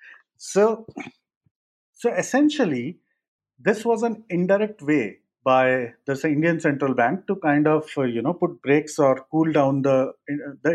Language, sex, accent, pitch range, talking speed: English, male, Indian, 130-180 Hz, 140 wpm